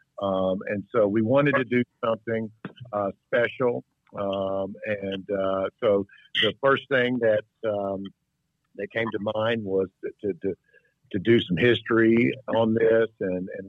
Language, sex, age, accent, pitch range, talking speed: English, male, 50-69, American, 95-115 Hz, 155 wpm